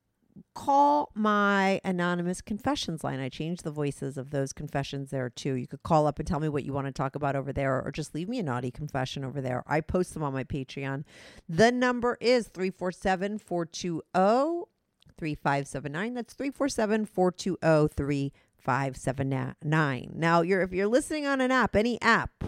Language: English